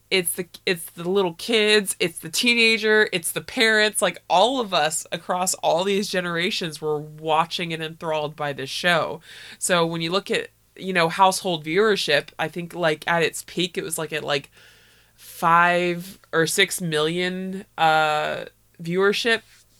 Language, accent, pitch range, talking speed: English, American, 155-195 Hz, 160 wpm